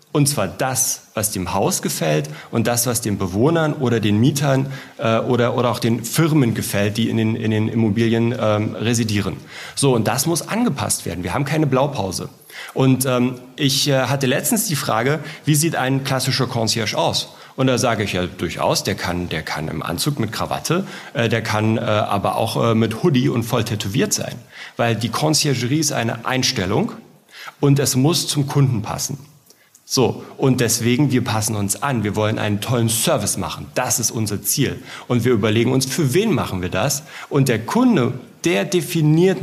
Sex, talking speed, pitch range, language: male, 190 wpm, 110-145 Hz, German